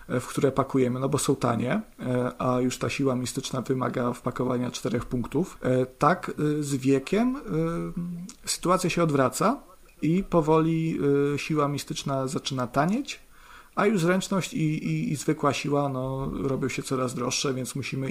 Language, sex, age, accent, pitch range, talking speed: Polish, male, 40-59, native, 130-165 Hz, 140 wpm